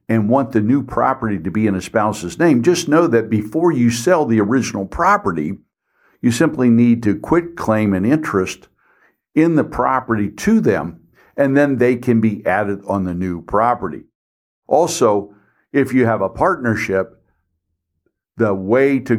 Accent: American